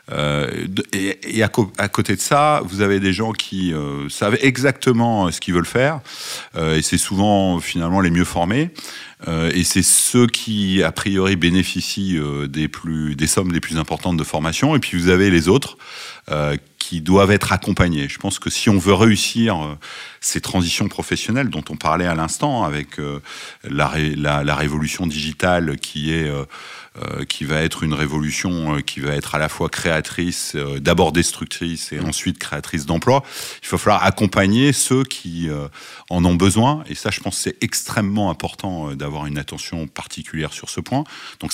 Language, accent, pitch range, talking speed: French, French, 75-100 Hz, 190 wpm